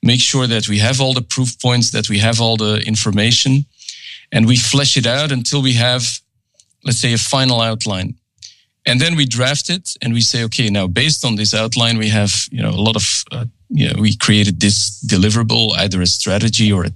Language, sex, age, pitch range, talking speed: English, male, 40-59, 110-130 Hz, 215 wpm